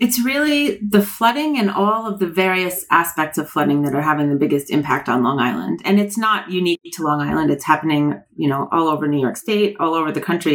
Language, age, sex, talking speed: English, 30-49, female, 235 wpm